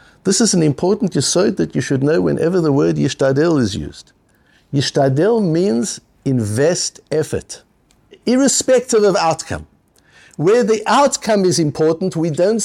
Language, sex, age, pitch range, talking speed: English, male, 60-79, 135-195 Hz, 140 wpm